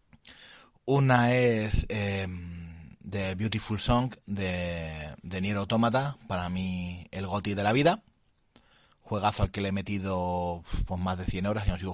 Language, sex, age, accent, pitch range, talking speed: Spanish, male, 30-49, Spanish, 90-105 Hz, 155 wpm